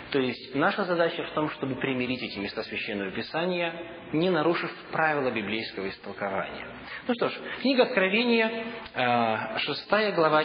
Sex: male